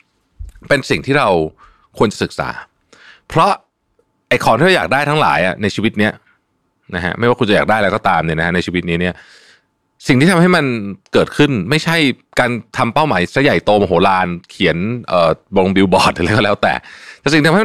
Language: Thai